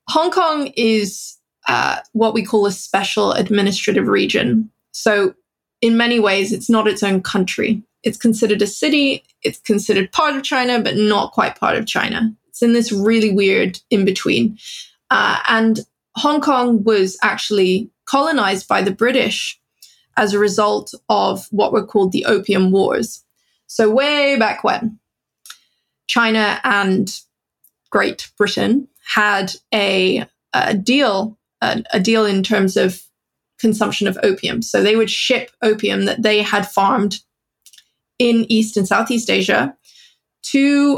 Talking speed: 140 wpm